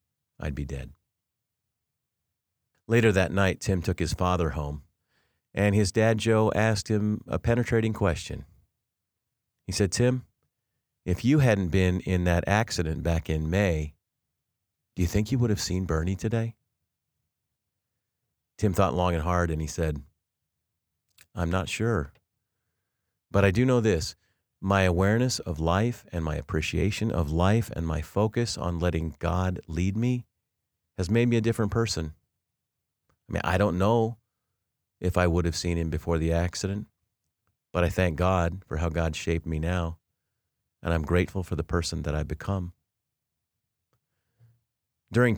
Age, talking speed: 40-59, 150 wpm